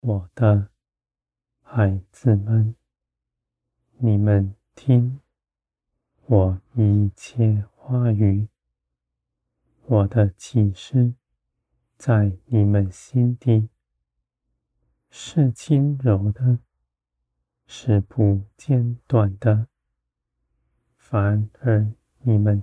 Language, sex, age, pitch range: Chinese, male, 30-49, 100-125 Hz